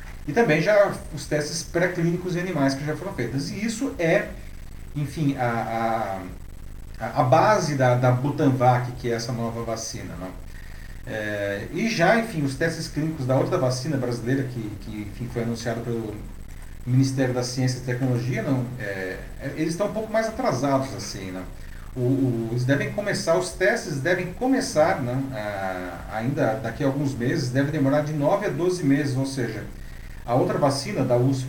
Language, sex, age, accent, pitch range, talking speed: Portuguese, male, 40-59, Brazilian, 115-140 Hz, 170 wpm